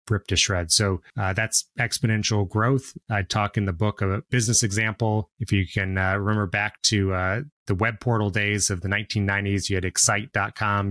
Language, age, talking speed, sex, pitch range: English, 30-49, 195 wpm, male, 95-110 Hz